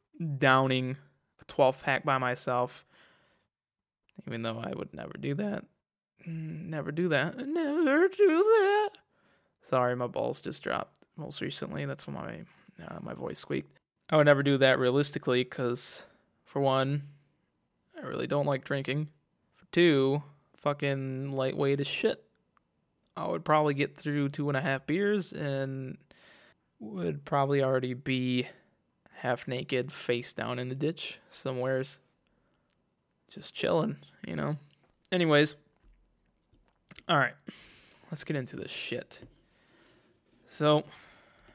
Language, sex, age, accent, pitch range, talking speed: English, male, 20-39, American, 130-150 Hz, 125 wpm